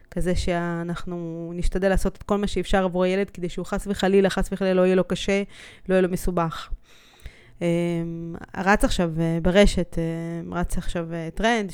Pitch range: 175-210 Hz